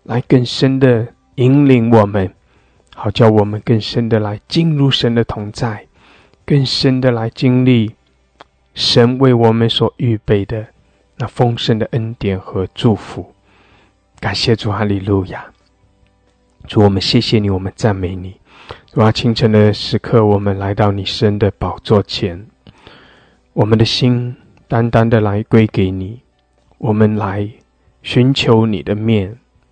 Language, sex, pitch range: English, male, 105-125 Hz